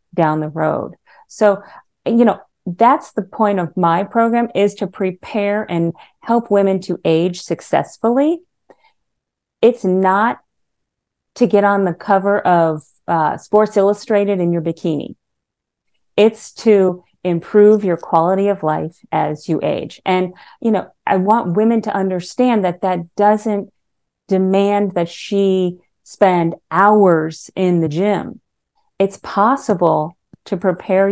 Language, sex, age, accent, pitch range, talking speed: English, female, 40-59, American, 170-210 Hz, 130 wpm